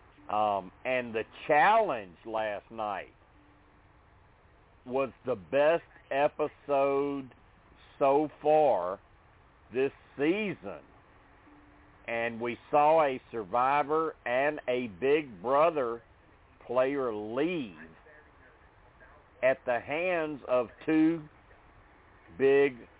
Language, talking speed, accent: English, 80 wpm, American